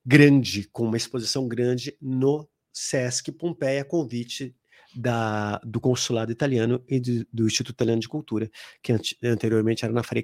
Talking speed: 145 wpm